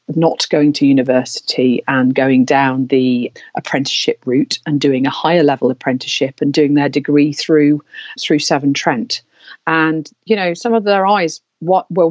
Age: 40-59